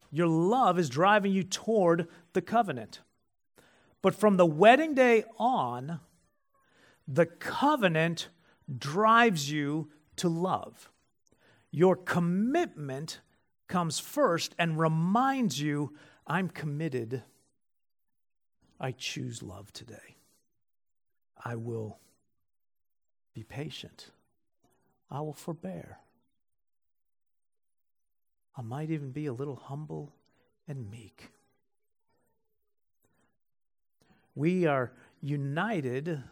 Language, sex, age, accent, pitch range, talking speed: English, male, 50-69, American, 145-205 Hz, 85 wpm